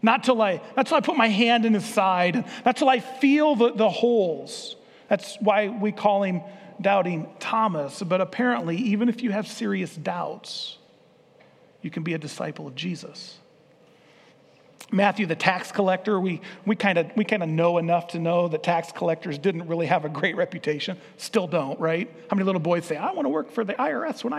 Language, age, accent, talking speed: English, 40-59, American, 195 wpm